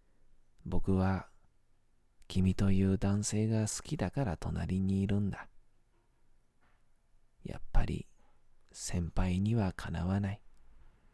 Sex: male